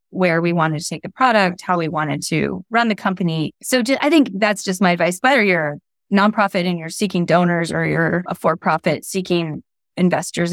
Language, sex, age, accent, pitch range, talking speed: English, female, 20-39, American, 175-230 Hz, 210 wpm